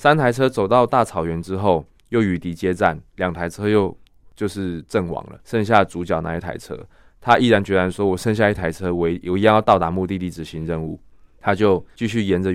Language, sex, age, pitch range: Chinese, male, 20-39, 85-100 Hz